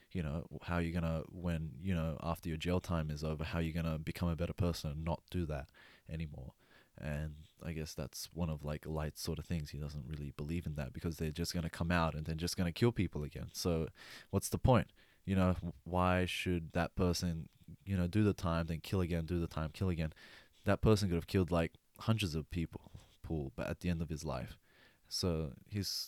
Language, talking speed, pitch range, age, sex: English, 235 wpm, 80-90 Hz, 20-39, male